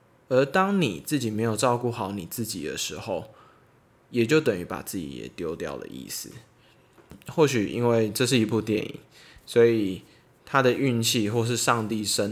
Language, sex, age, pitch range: Chinese, male, 20-39, 110-130 Hz